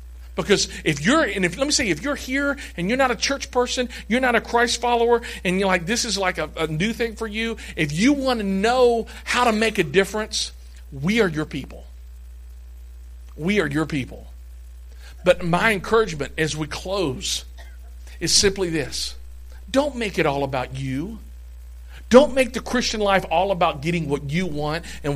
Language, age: English, 50-69